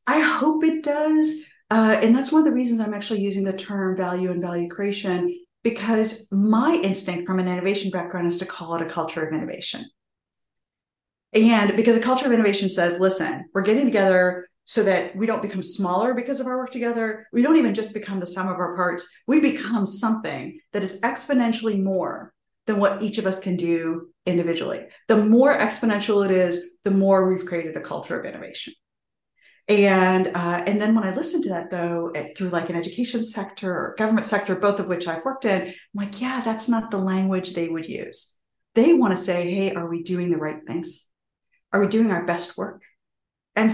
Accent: American